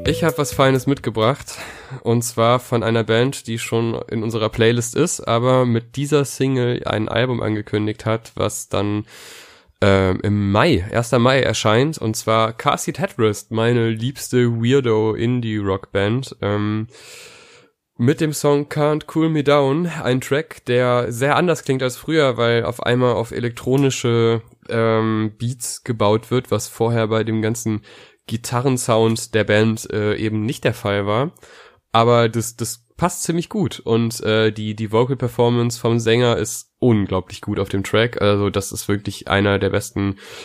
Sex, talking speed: male, 155 wpm